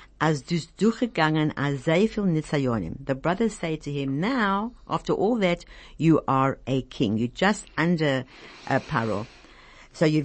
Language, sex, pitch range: German, female, 130-175 Hz